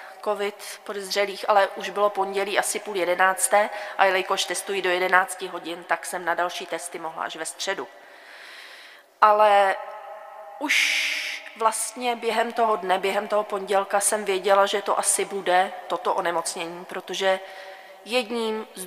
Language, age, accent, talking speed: Czech, 30-49, native, 140 wpm